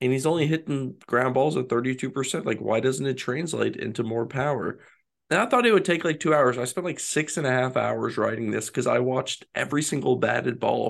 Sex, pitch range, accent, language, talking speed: male, 110-135 Hz, American, English, 230 wpm